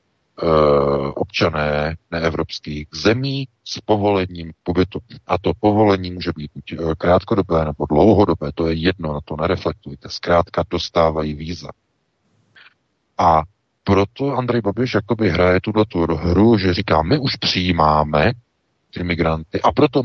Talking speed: 125 wpm